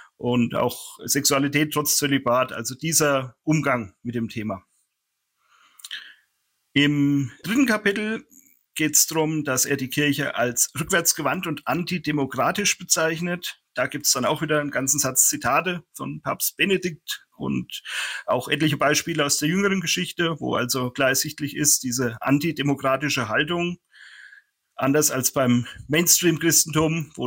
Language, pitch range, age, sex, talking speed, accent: German, 130-155 Hz, 40-59, male, 130 wpm, German